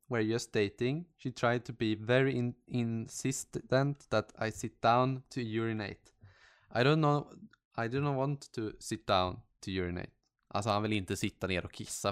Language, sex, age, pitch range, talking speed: Swedish, male, 20-39, 110-130 Hz, 180 wpm